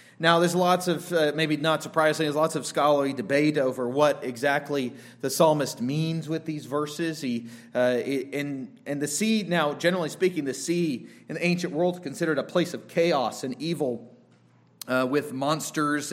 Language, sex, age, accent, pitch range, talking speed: English, male, 30-49, American, 125-160 Hz, 180 wpm